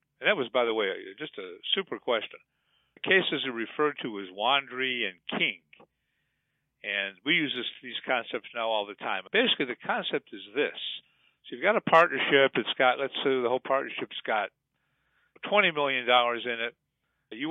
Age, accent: 50-69, American